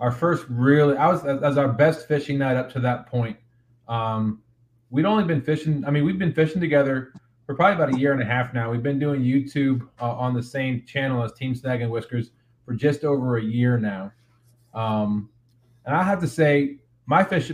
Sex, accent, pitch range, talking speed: male, American, 120-145 Hz, 210 wpm